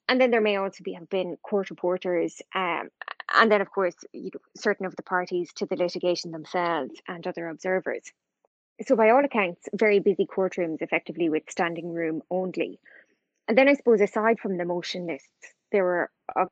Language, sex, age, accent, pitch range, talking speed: English, female, 20-39, Irish, 175-205 Hz, 180 wpm